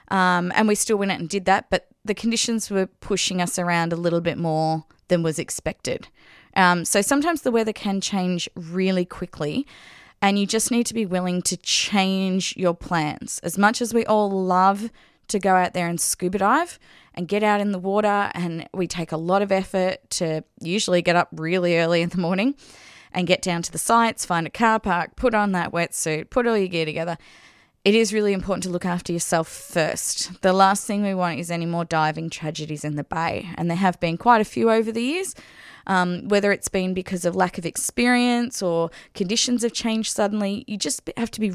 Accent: Australian